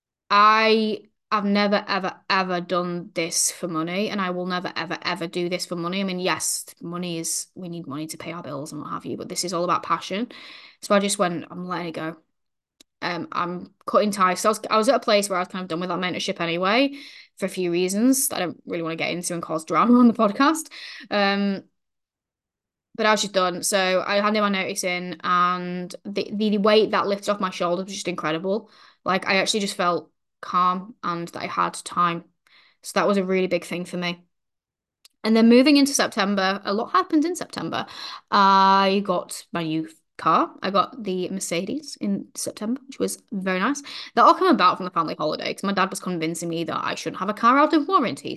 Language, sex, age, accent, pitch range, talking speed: English, female, 10-29, British, 175-215 Hz, 225 wpm